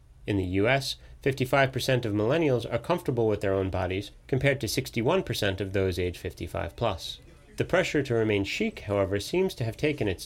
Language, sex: English, male